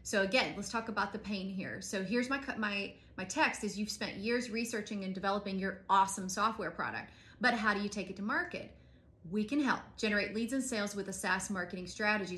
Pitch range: 190-230 Hz